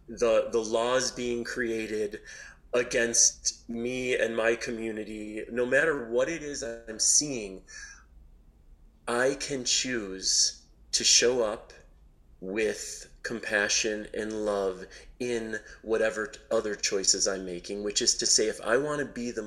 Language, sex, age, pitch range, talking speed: English, male, 30-49, 110-135 Hz, 130 wpm